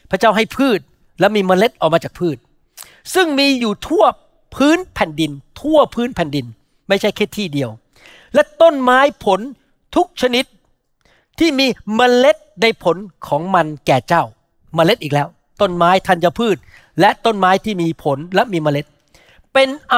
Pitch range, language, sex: 170-230 Hz, Thai, male